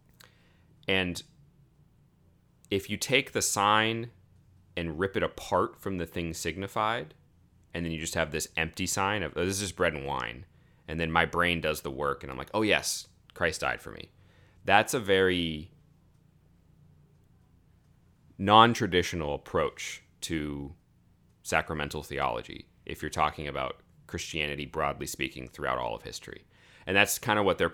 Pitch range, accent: 75-100 Hz, American